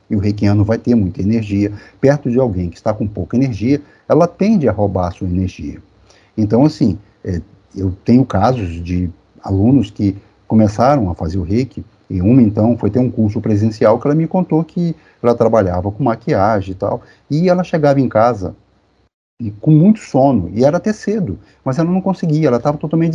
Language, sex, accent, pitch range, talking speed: Portuguese, male, Brazilian, 105-155 Hz, 190 wpm